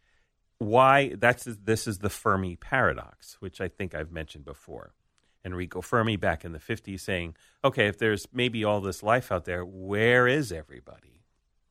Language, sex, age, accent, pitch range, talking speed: English, male, 40-59, American, 90-110 Hz, 165 wpm